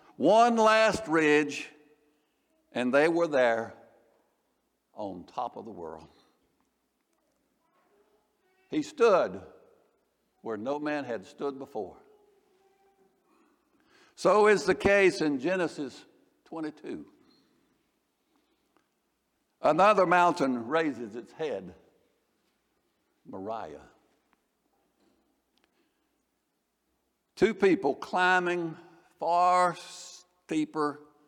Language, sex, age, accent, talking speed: English, male, 60-79, American, 75 wpm